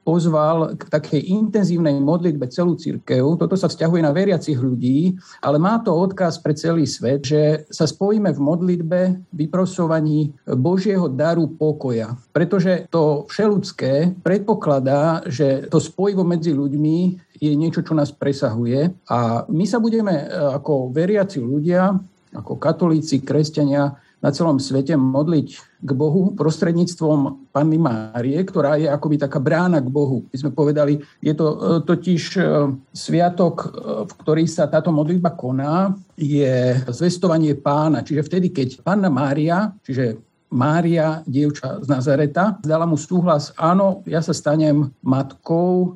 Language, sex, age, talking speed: Slovak, male, 50-69, 135 wpm